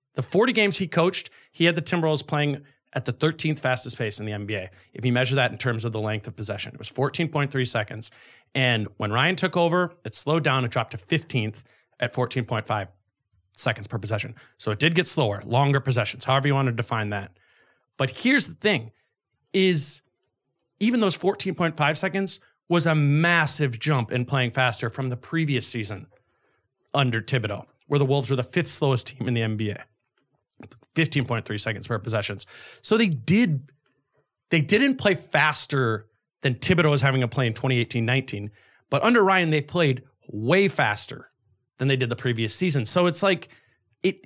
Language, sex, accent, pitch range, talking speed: English, male, American, 120-165 Hz, 180 wpm